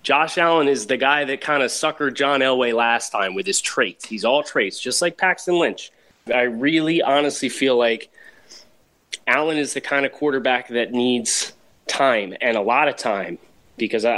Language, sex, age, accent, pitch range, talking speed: English, male, 20-39, American, 120-145 Hz, 180 wpm